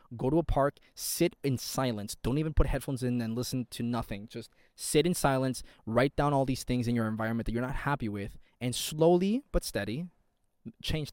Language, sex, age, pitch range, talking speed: English, male, 20-39, 115-150 Hz, 205 wpm